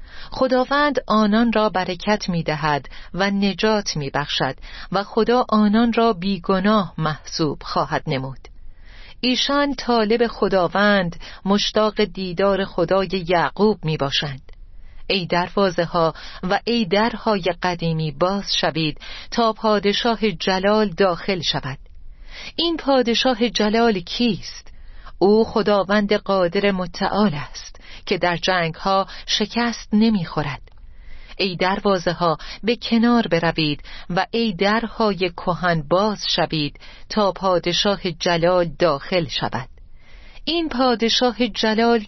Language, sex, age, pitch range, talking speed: Persian, female, 40-59, 175-220 Hz, 105 wpm